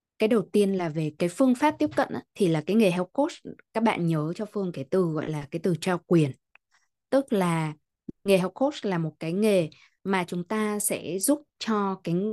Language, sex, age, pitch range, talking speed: Vietnamese, female, 20-39, 160-200 Hz, 225 wpm